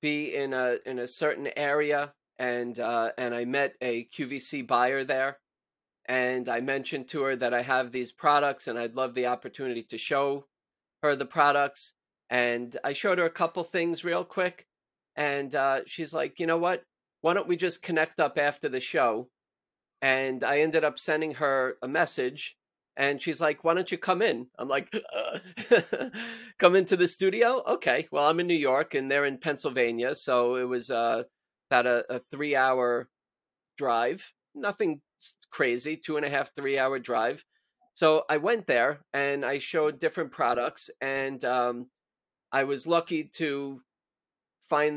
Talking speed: 165 wpm